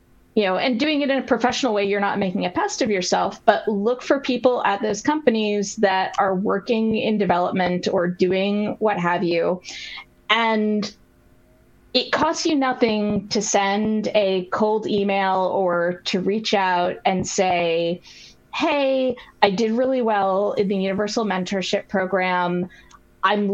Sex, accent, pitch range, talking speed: female, American, 185-225 Hz, 155 wpm